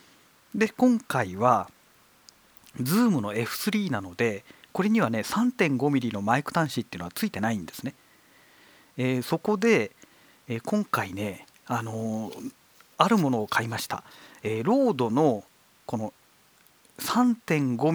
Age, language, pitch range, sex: 40-59, Japanese, 120-195 Hz, male